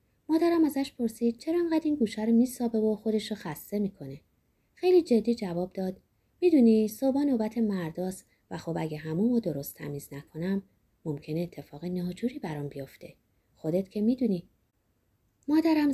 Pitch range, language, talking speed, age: 160-255 Hz, Persian, 140 wpm, 30-49